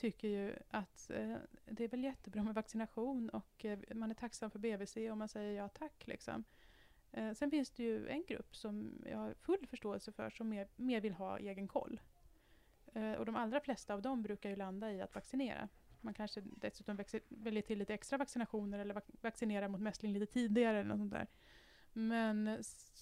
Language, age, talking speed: English, 20-39, 205 wpm